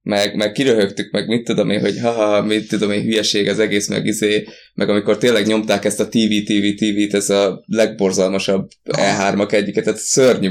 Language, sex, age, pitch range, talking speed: Hungarian, male, 20-39, 100-125 Hz, 175 wpm